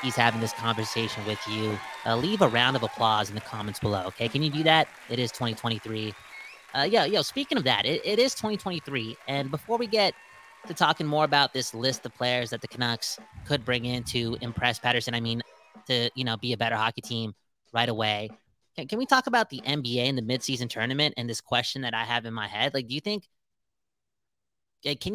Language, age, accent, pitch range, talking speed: English, 20-39, American, 115-140 Hz, 215 wpm